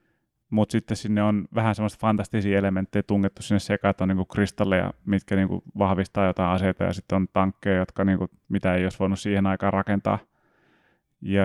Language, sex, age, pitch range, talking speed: Finnish, male, 30-49, 100-110 Hz, 180 wpm